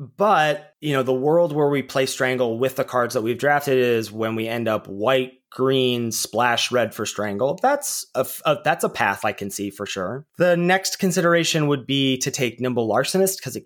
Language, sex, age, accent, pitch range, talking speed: English, male, 20-39, American, 110-155 Hz, 205 wpm